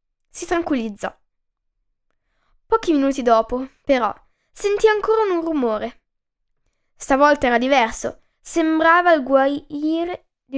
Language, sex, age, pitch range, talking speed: Italian, female, 10-29, 225-295 Hz, 95 wpm